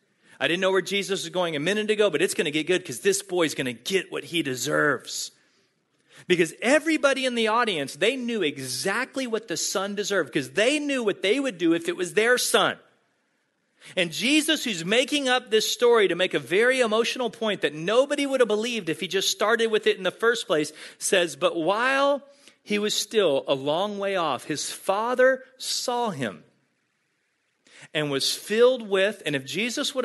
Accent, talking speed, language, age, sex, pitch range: American, 200 wpm, English, 40-59, male, 185-275 Hz